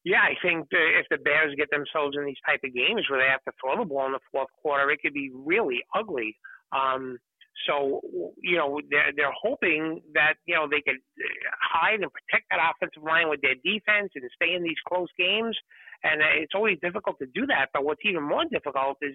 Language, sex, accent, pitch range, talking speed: English, male, American, 145-215 Hz, 215 wpm